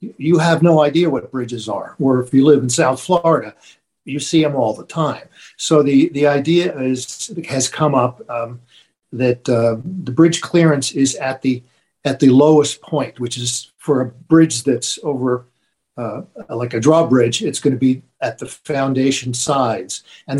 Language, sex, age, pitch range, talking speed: English, male, 50-69, 125-150 Hz, 180 wpm